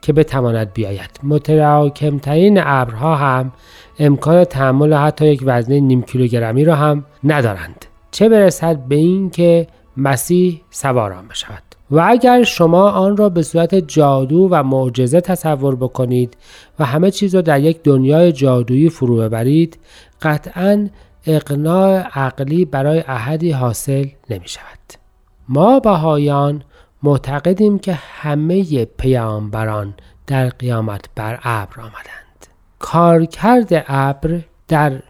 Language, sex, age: Persian, male, 40-59